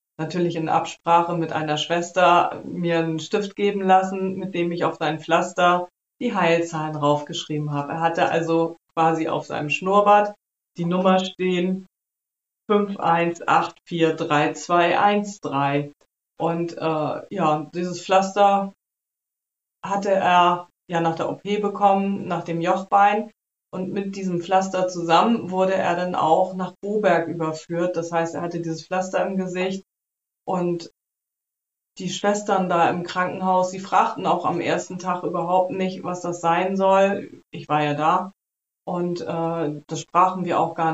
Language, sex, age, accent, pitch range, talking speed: German, female, 30-49, German, 165-190 Hz, 140 wpm